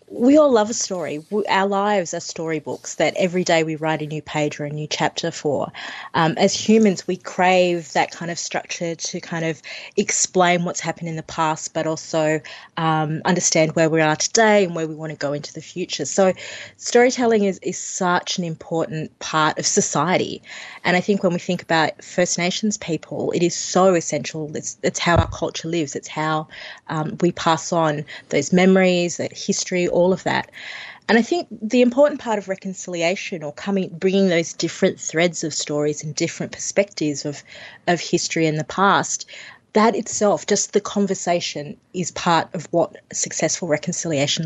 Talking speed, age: 185 wpm, 20-39